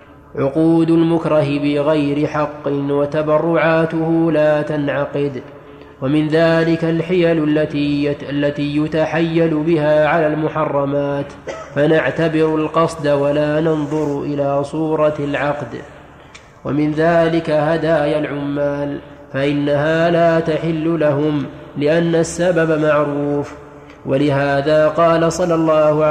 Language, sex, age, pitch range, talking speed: Arabic, male, 20-39, 145-160 Hz, 85 wpm